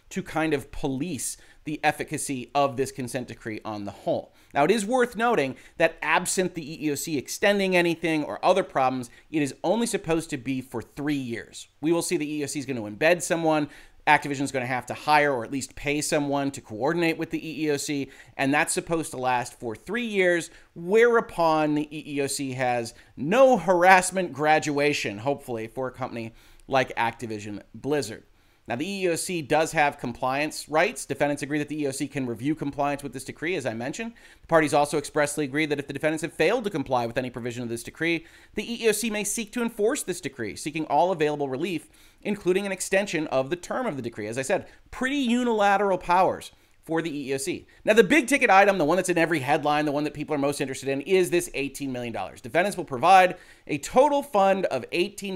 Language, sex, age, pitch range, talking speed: English, male, 30-49, 135-185 Hz, 205 wpm